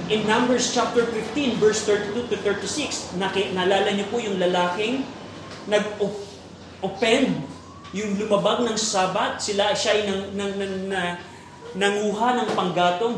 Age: 30-49